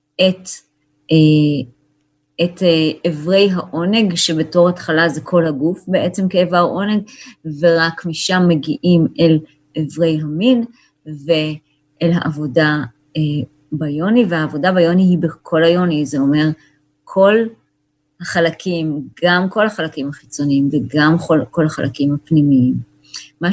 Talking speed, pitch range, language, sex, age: 100 wpm, 155-185 Hz, Hebrew, female, 30-49